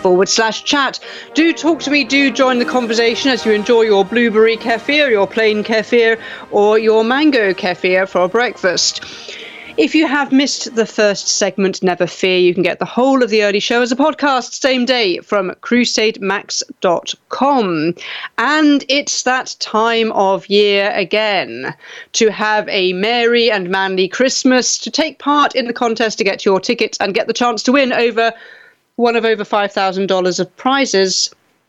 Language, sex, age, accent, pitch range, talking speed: English, female, 40-59, British, 210-280 Hz, 165 wpm